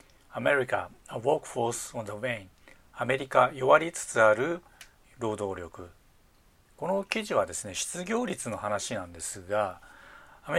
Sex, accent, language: male, native, Japanese